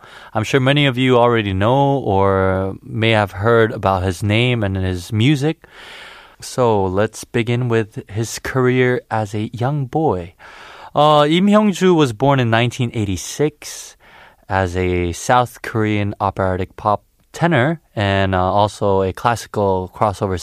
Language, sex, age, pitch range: Korean, male, 20-39, 95-125 Hz